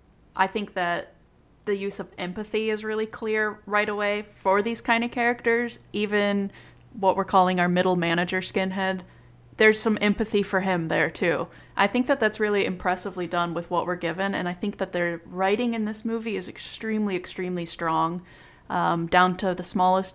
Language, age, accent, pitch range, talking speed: English, 20-39, American, 180-210 Hz, 180 wpm